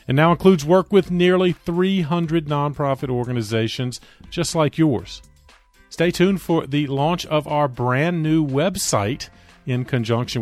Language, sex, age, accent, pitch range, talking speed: English, male, 40-59, American, 110-145 Hz, 140 wpm